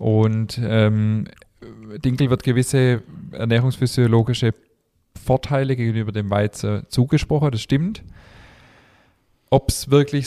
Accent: German